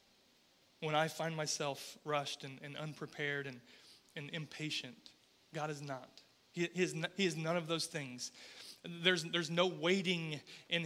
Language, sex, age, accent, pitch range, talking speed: English, male, 30-49, American, 150-180 Hz, 145 wpm